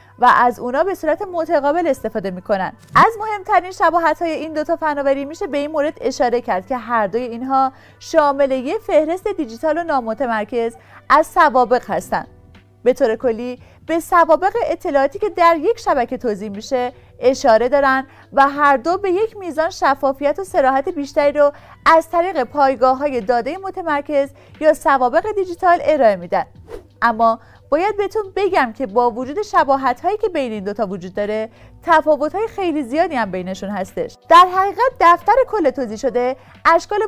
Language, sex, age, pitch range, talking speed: Persian, female, 30-49, 245-340 Hz, 160 wpm